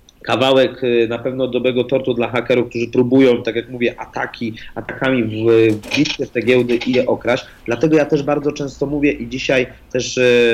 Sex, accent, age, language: male, native, 40-59, Polish